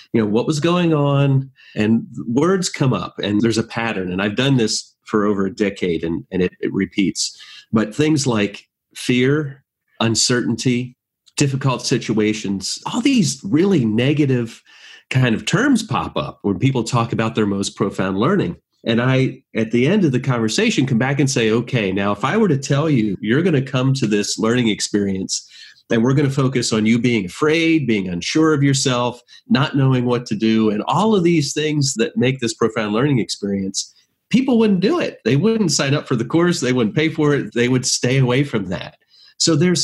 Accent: American